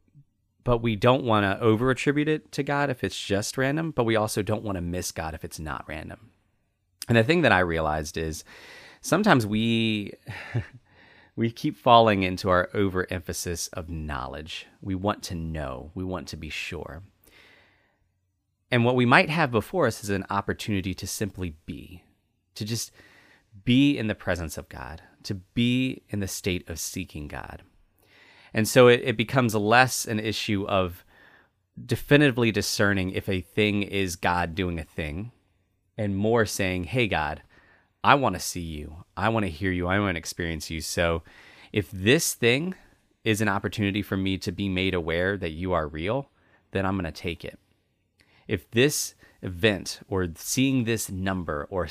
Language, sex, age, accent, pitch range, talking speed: English, male, 30-49, American, 90-115 Hz, 175 wpm